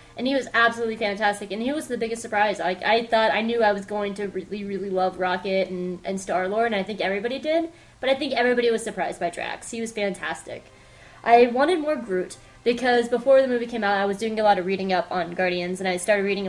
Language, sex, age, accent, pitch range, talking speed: English, female, 20-39, American, 195-245 Hz, 245 wpm